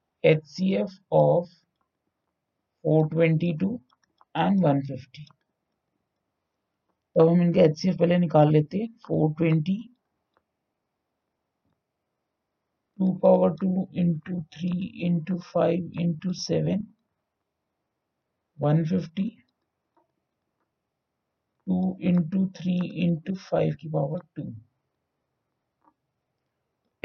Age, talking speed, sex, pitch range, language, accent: 60-79, 60 wpm, male, 155-180 Hz, Hindi, native